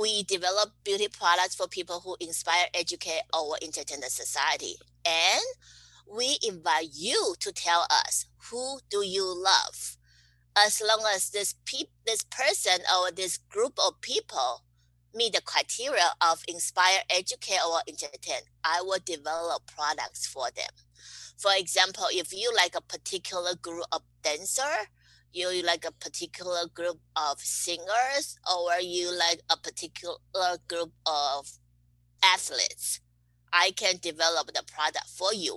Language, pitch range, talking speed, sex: English, 155-210 Hz, 140 wpm, female